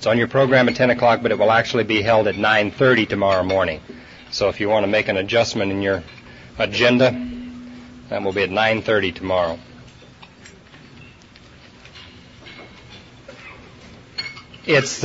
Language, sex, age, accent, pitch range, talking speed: English, male, 40-59, American, 100-125 Hz, 140 wpm